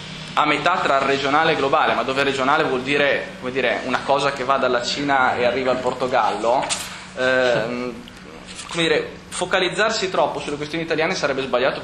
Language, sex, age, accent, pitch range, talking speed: Italian, male, 20-39, native, 125-160 Hz, 165 wpm